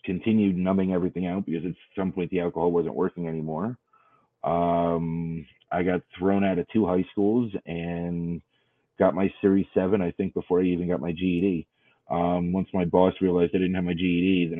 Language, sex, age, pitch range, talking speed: English, male, 30-49, 80-95 Hz, 190 wpm